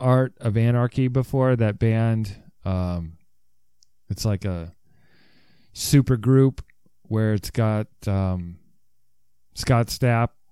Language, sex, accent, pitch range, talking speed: English, male, American, 105-130 Hz, 105 wpm